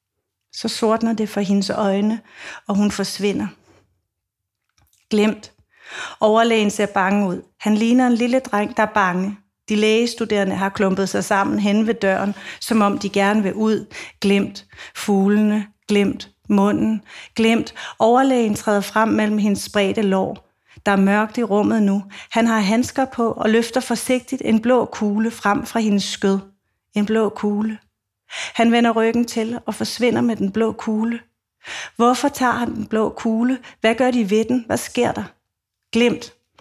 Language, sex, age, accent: Danish, female, 40-59, native